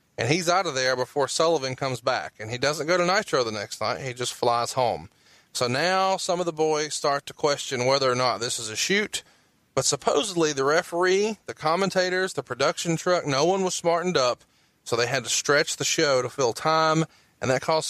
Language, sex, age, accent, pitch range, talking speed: English, male, 30-49, American, 120-155 Hz, 220 wpm